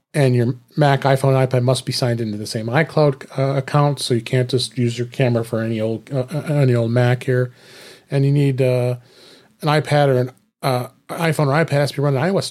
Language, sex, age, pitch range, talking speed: English, male, 40-59, 125-145 Hz, 225 wpm